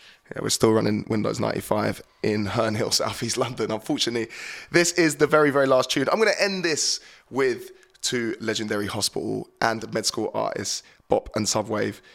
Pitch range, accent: 110-140 Hz, British